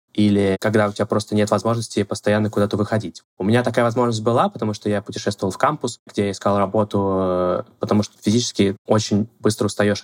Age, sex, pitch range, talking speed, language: 20-39, male, 105-125 Hz, 180 wpm, Russian